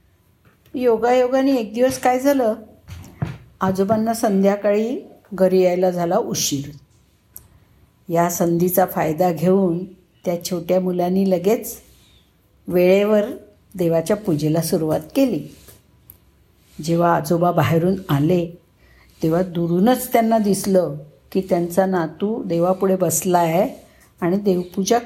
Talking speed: 75 wpm